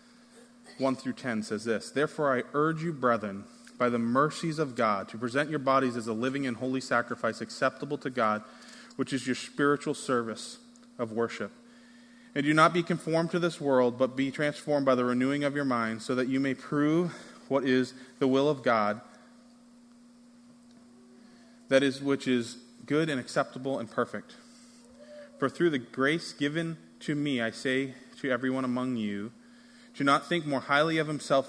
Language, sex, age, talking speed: English, male, 20-39, 175 wpm